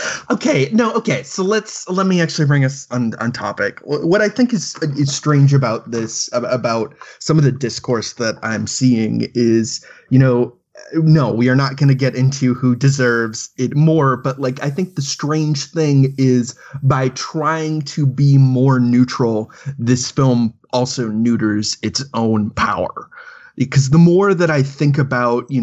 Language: English